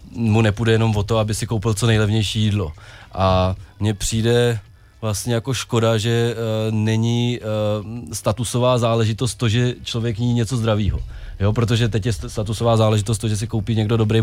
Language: Czech